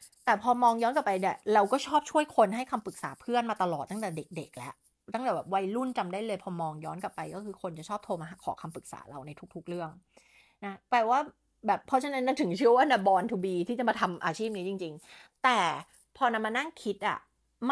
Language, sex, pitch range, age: Thai, female, 175-240 Hz, 30-49